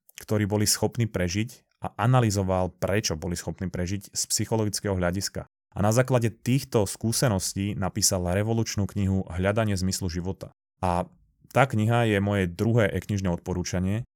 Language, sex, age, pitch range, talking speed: Slovak, male, 30-49, 95-110 Hz, 135 wpm